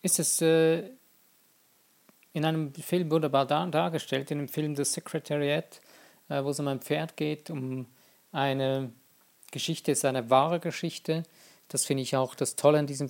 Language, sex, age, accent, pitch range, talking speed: German, male, 50-69, German, 135-165 Hz, 165 wpm